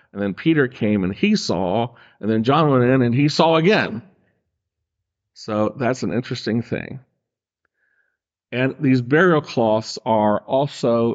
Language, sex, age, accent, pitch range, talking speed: English, male, 50-69, American, 105-130 Hz, 145 wpm